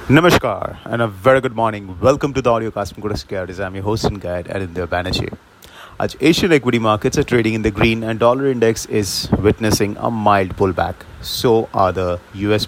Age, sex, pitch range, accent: 30-49, male, 100-125 Hz, Indian